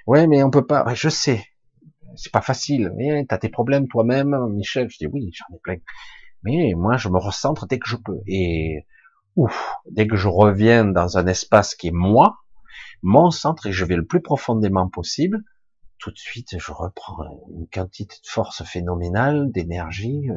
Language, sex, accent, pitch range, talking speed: French, male, French, 90-135 Hz, 195 wpm